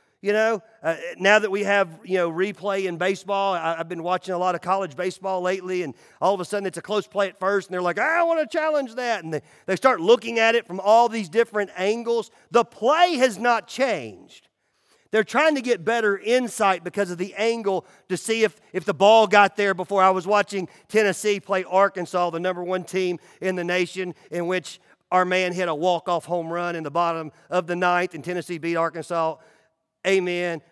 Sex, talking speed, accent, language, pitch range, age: male, 215 wpm, American, English, 175-220 Hz, 40-59